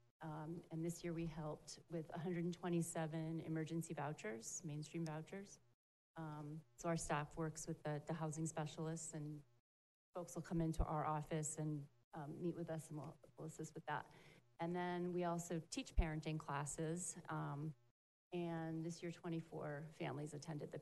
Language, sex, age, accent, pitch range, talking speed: English, female, 30-49, American, 155-175 Hz, 155 wpm